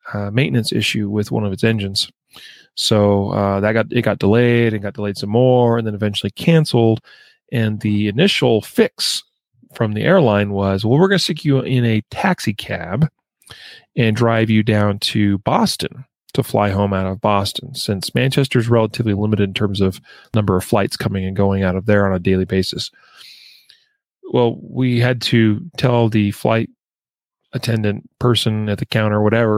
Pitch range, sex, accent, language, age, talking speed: 100-120 Hz, male, American, English, 30-49, 180 wpm